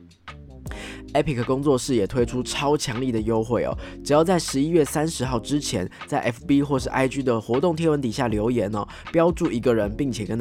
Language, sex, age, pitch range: Chinese, male, 20-39, 110-150 Hz